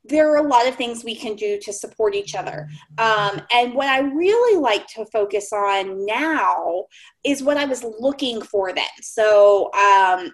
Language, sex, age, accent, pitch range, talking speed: English, female, 20-39, American, 200-275 Hz, 185 wpm